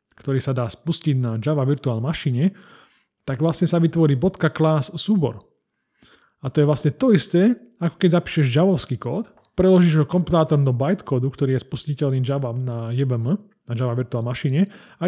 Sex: male